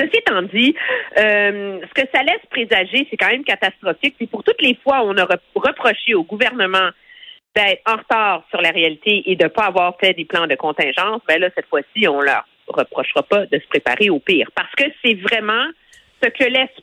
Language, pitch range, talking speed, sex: French, 205-315 Hz, 220 wpm, female